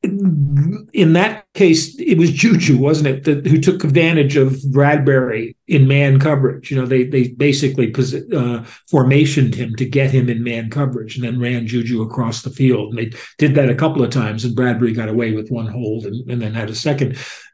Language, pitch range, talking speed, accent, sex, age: English, 120-145 Hz, 200 wpm, American, male, 50-69